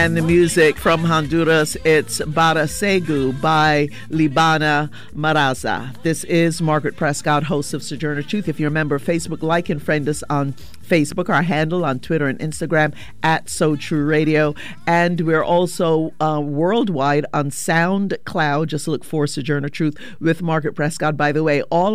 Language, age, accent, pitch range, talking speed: English, 50-69, American, 150-175 Hz, 165 wpm